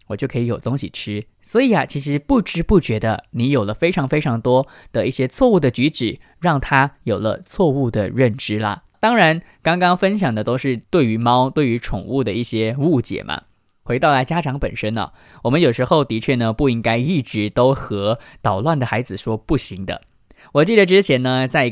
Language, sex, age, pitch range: English, male, 20-39, 115-160 Hz